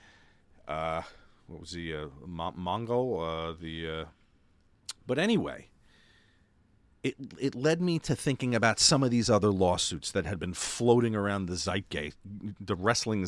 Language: English